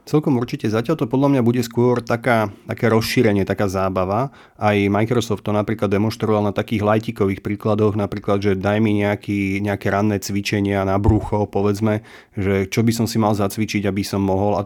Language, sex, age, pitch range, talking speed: Slovak, male, 30-49, 105-120 Hz, 180 wpm